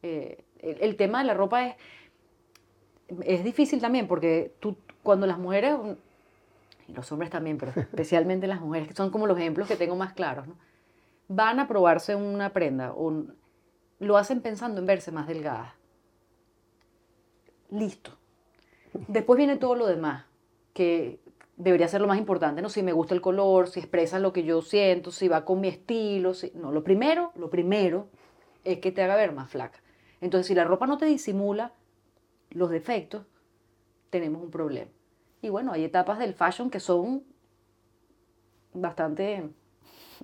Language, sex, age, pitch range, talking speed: Spanish, female, 30-49, 170-215 Hz, 165 wpm